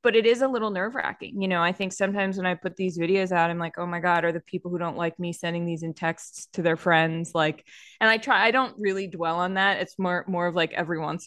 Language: English